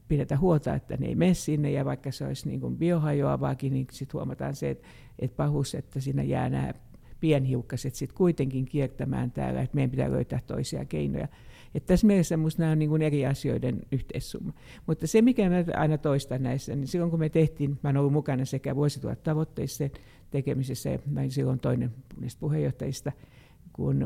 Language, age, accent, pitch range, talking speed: Finnish, 60-79, native, 130-150 Hz, 175 wpm